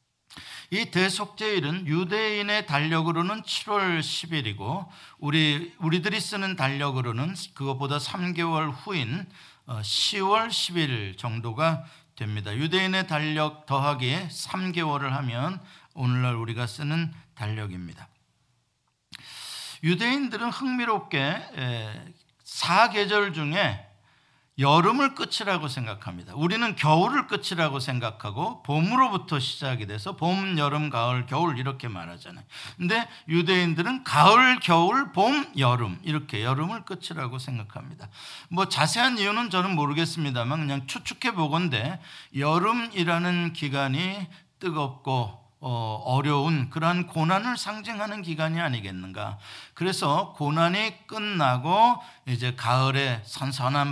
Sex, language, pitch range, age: male, Korean, 135-190 Hz, 50-69